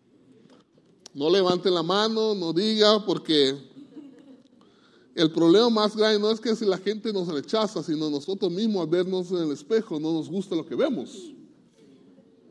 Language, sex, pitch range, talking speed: English, male, 150-210 Hz, 160 wpm